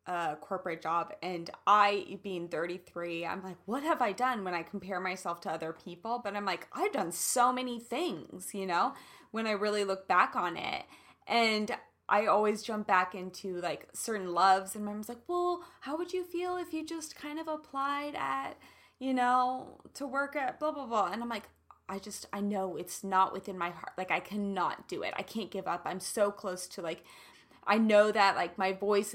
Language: English